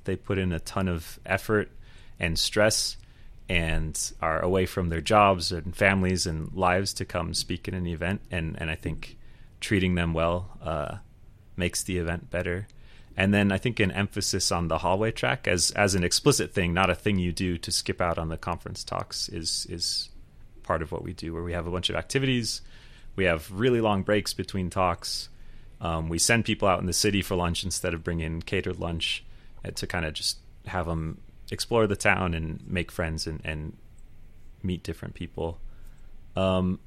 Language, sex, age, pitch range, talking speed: English, male, 30-49, 85-110 Hz, 190 wpm